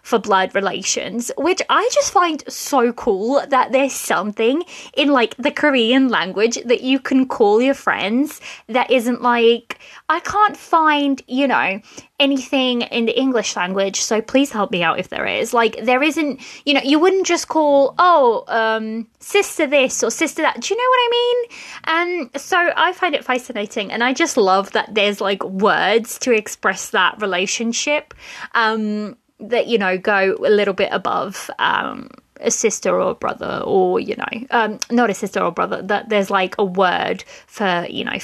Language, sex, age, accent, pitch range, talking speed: English, female, 20-39, British, 205-280 Hz, 180 wpm